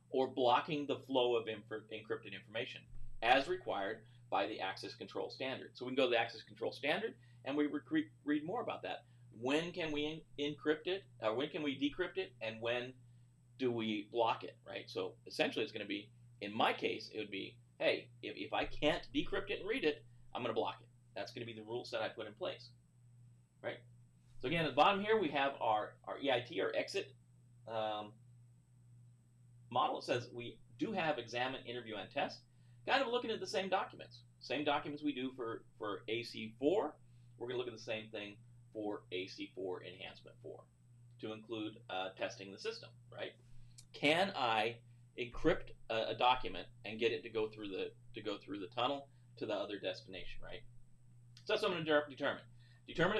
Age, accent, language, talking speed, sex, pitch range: 40-59, American, English, 190 wpm, male, 115-145 Hz